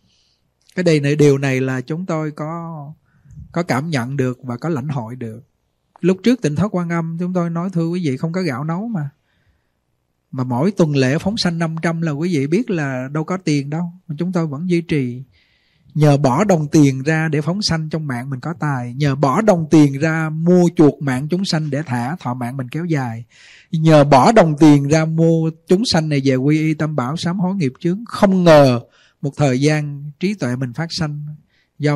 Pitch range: 135-170 Hz